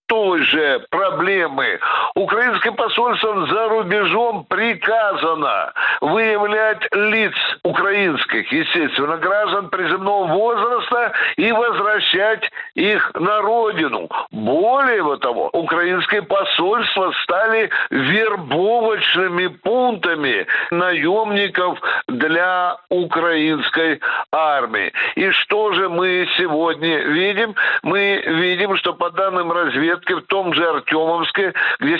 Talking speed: 90 wpm